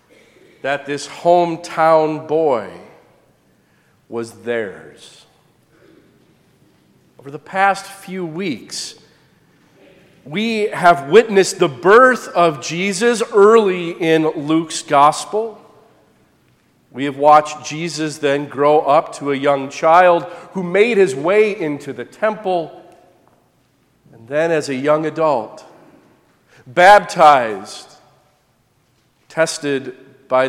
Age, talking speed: 40-59, 95 wpm